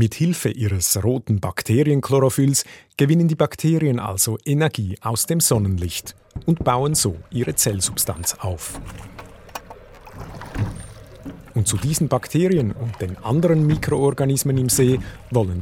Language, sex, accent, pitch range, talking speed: German, male, Austrian, 100-140 Hz, 115 wpm